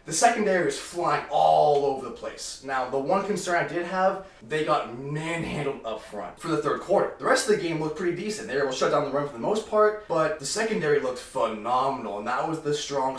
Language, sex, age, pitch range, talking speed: English, male, 20-39, 130-180 Hz, 245 wpm